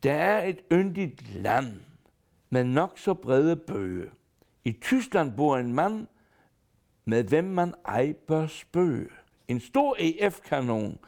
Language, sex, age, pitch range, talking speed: Danish, male, 60-79, 145-205 Hz, 130 wpm